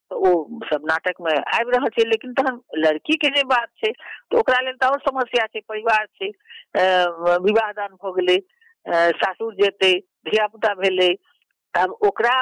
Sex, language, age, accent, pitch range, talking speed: female, Hindi, 50-69, native, 190-260 Hz, 100 wpm